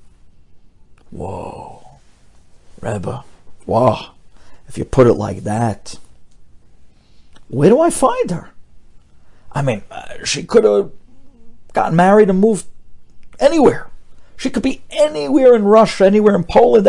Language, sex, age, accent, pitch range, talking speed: English, male, 60-79, American, 115-190 Hz, 120 wpm